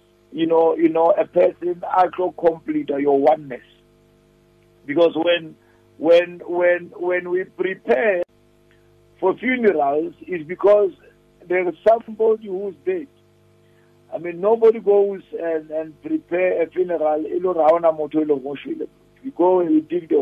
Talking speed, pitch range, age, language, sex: 120 wpm, 150-205 Hz, 50-69, English, male